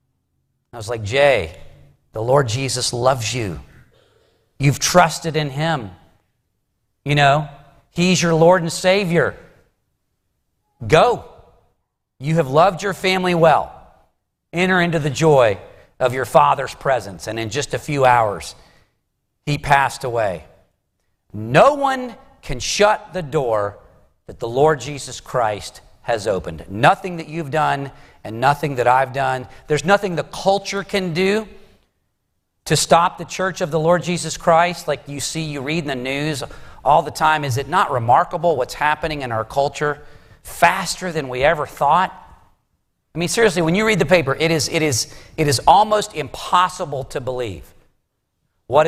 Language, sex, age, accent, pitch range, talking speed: English, male, 40-59, American, 120-170 Hz, 150 wpm